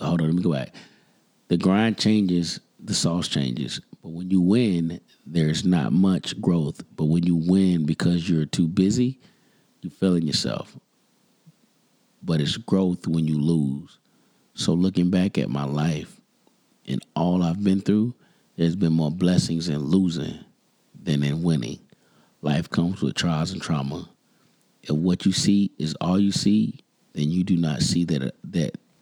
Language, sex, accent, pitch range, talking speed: English, male, American, 80-95 Hz, 160 wpm